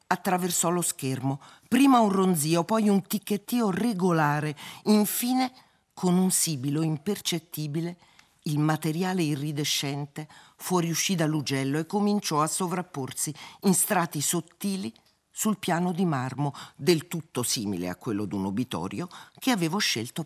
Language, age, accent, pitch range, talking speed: Italian, 50-69, native, 135-195 Hz, 120 wpm